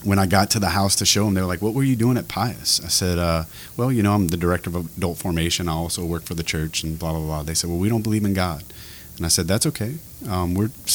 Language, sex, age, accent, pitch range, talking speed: English, male, 30-49, American, 85-100 Hz, 300 wpm